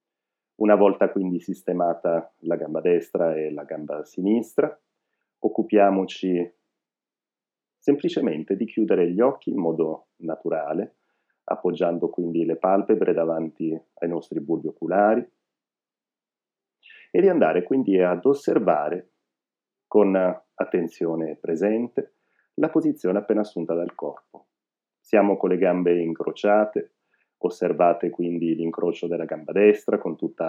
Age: 40-59